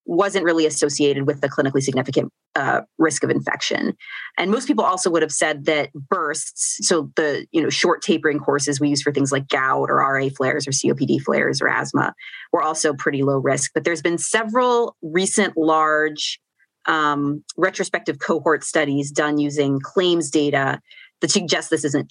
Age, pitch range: 30-49, 145-180 Hz